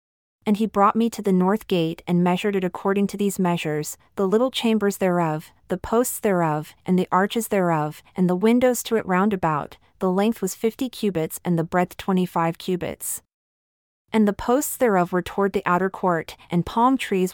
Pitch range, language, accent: 170-210 Hz, English, American